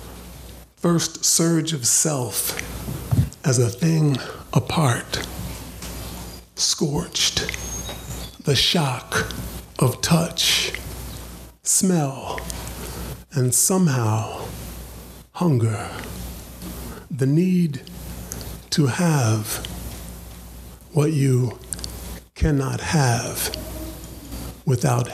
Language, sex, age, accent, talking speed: English, male, 50-69, American, 60 wpm